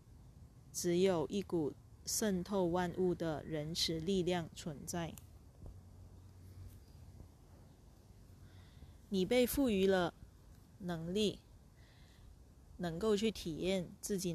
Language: Chinese